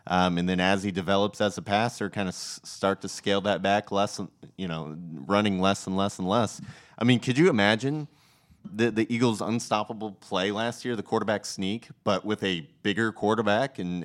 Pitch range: 90-115 Hz